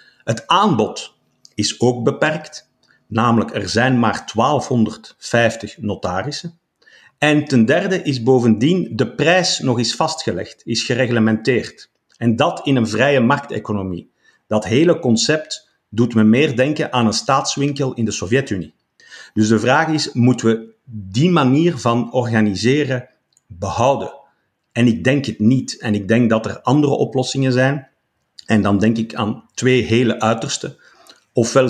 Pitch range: 110-130 Hz